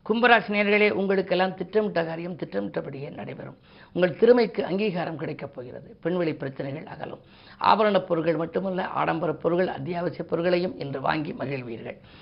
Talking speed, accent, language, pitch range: 125 wpm, native, Tamil, 155-195 Hz